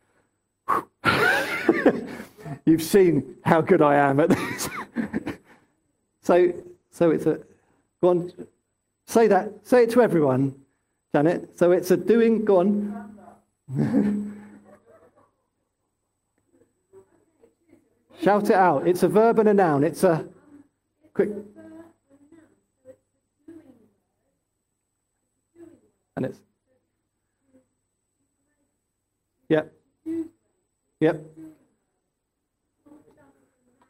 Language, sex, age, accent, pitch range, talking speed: English, male, 50-69, British, 140-210 Hz, 80 wpm